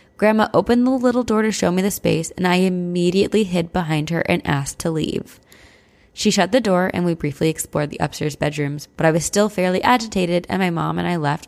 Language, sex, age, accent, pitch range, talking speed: English, female, 20-39, American, 160-210 Hz, 225 wpm